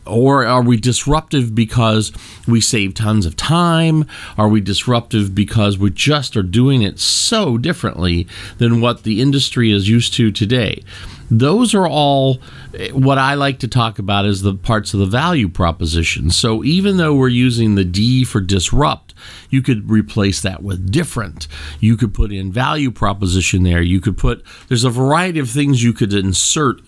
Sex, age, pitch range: male, 40-59, 95-125 Hz